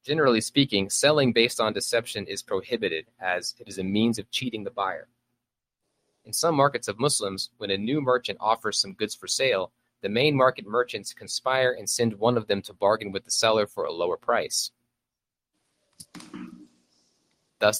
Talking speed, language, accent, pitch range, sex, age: 170 wpm, English, American, 100-125 Hz, male, 30-49